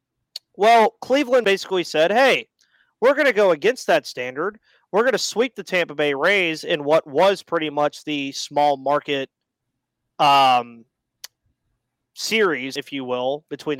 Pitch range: 140-175 Hz